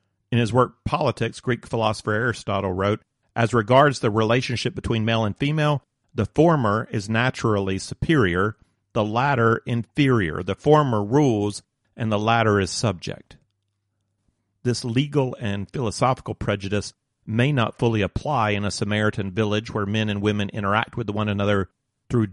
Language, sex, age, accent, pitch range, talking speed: English, male, 40-59, American, 100-120 Hz, 145 wpm